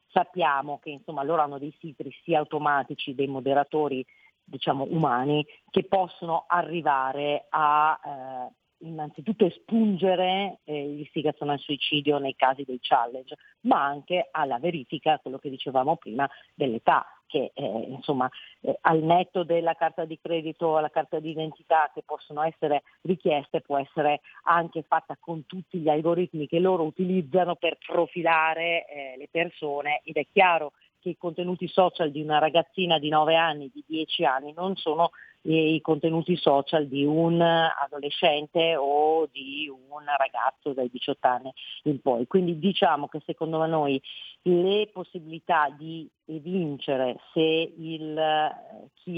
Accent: native